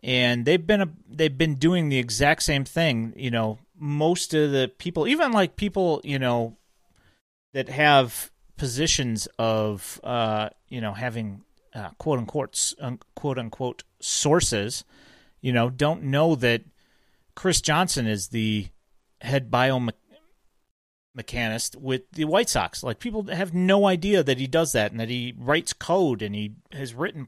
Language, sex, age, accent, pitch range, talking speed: English, male, 40-59, American, 115-155 Hz, 155 wpm